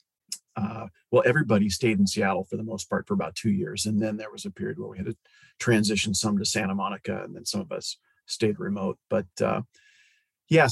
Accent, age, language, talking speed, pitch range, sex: American, 40-59, English, 220 wpm, 105-135 Hz, male